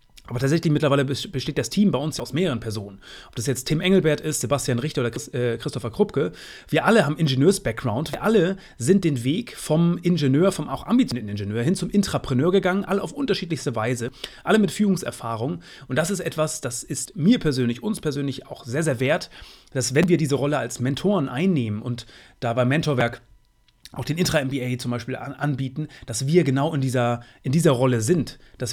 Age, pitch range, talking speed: 30-49, 120-155 Hz, 190 wpm